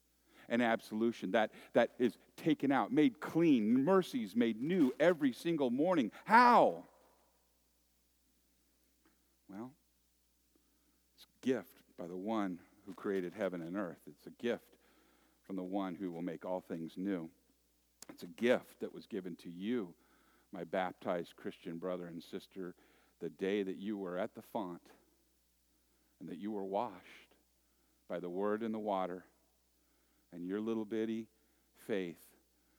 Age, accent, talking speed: 50-69, American, 145 wpm